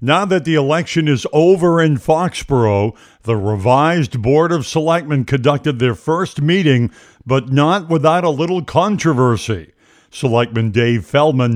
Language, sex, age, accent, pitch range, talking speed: English, male, 50-69, American, 115-155 Hz, 135 wpm